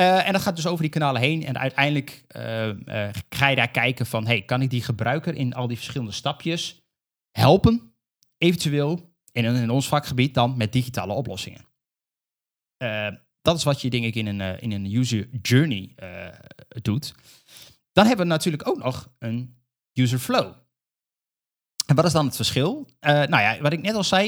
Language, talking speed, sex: Dutch, 185 wpm, male